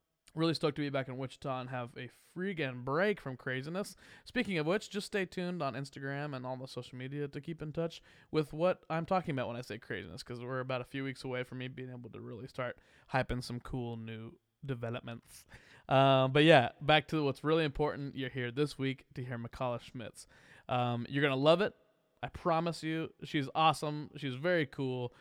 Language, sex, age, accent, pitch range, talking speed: English, male, 20-39, American, 125-170 Hz, 210 wpm